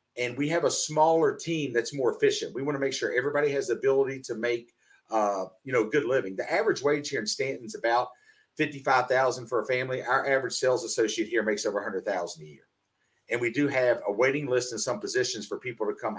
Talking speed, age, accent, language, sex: 235 wpm, 40-59, American, English, male